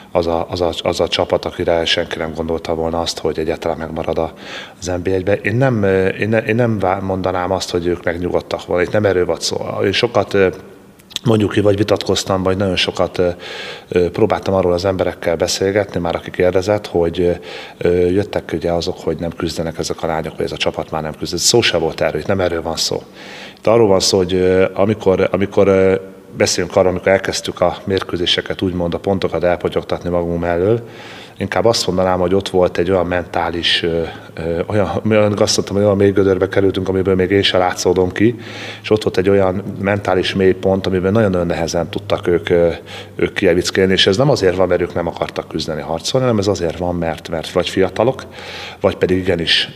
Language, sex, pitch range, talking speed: Hungarian, male, 85-100 Hz, 190 wpm